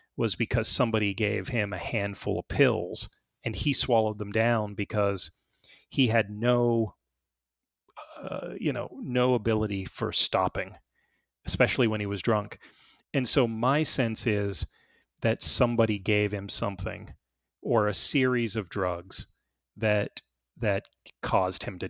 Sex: male